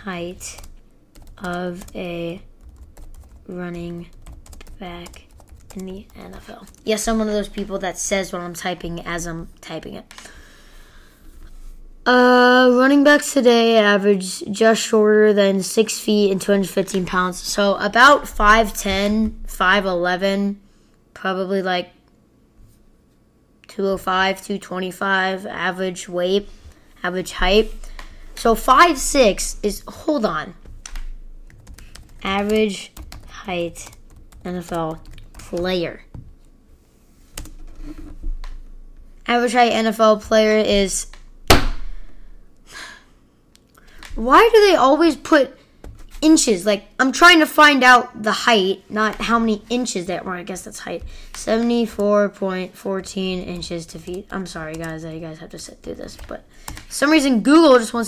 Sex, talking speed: female, 110 wpm